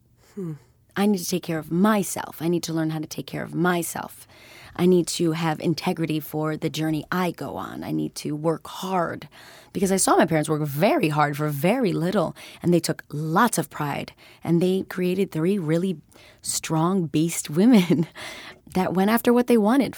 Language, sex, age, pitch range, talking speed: English, female, 30-49, 150-185 Hz, 190 wpm